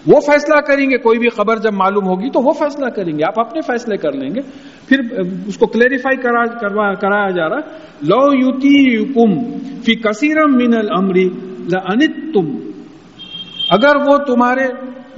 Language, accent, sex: English, Indian, male